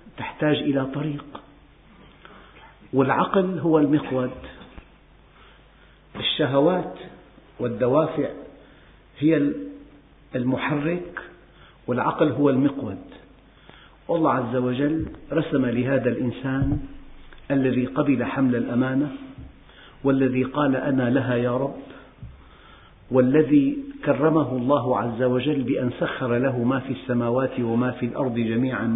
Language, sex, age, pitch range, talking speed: Arabic, male, 50-69, 120-150 Hz, 90 wpm